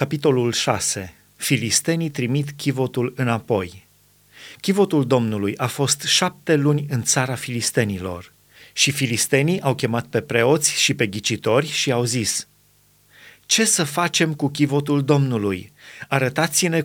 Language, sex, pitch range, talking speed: Romanian, male, 125-155 Hz, 120 wpm